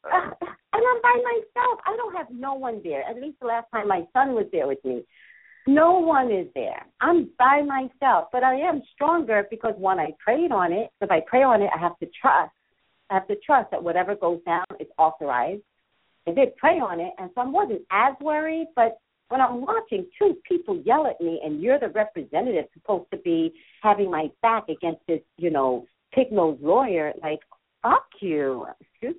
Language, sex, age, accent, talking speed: English, female, 50-69, American, 200 wpm